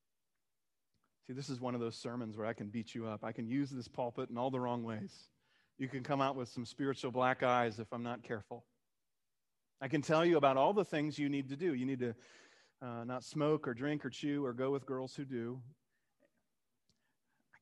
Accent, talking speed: American, 220 wpm